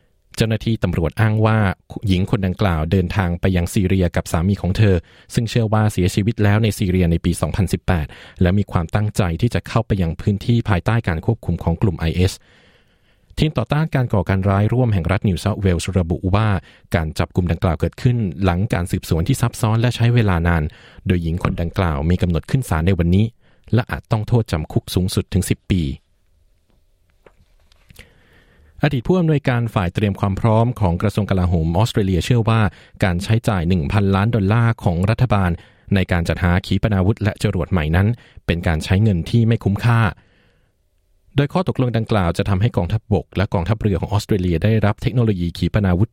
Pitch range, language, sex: 90-110 Hz, Thai, male